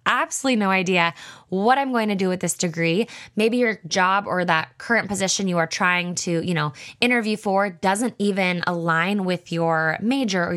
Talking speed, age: 185 wpm, 20-39